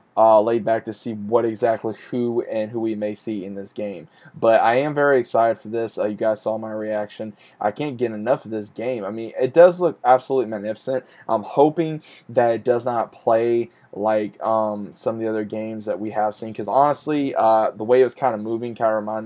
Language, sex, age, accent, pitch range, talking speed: English, male, 20-39, American, 110-125 Hz, 230 wpm